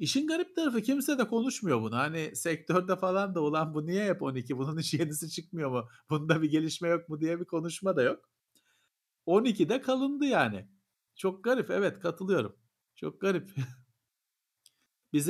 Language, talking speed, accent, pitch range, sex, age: Turkish, 160 wpm, native, 130-180 Hz, male, 50-69